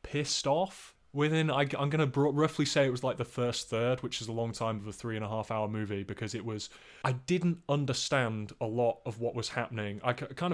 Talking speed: 235 wpm